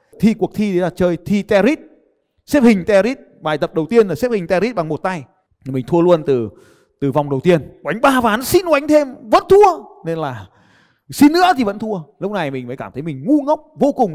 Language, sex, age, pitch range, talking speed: Vietnamese, male, 20-39, 140-215 Hz, 240 wpm